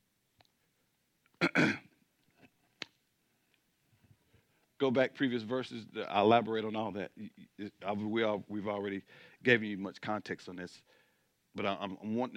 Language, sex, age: English, male, 50-69